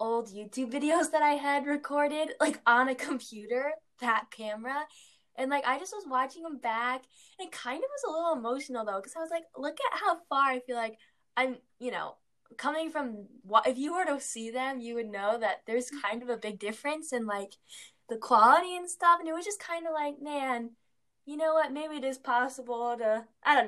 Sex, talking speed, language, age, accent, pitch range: female, 220 wpm, English, 10-29, American, 220-280 Hz